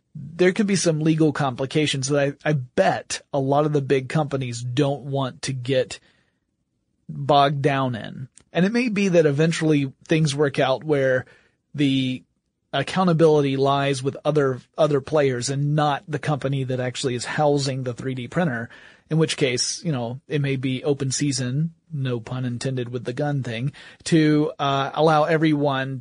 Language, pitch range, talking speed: English, 130-155 Hz, 165 wpm